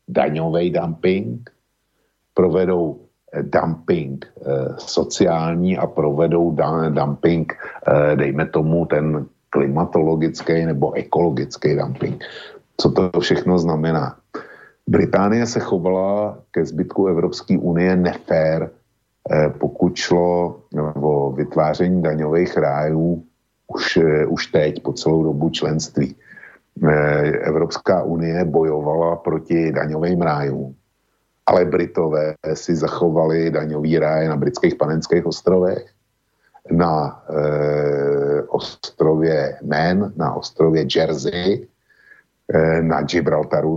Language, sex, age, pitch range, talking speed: Slovak, male, 50-69, 75-85 Hz, 100 wpm